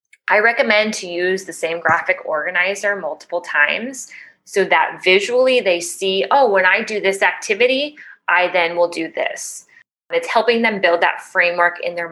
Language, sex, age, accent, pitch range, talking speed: English, female, 20-39, American, 175-240 Hz, 170 wpm